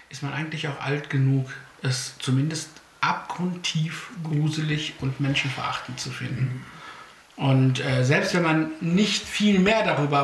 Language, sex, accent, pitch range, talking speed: German, male, German, 140-185 Hz, 135 wpm